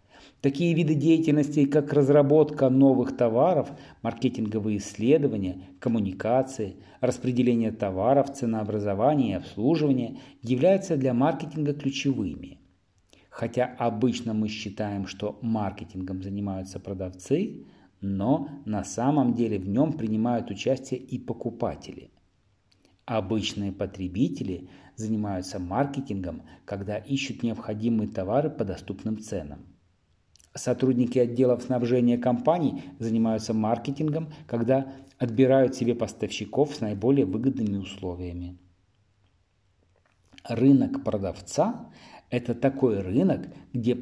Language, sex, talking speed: Russian, male, 95 wpm